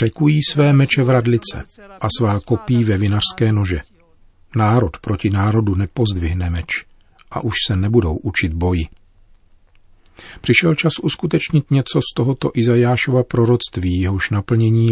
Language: Czech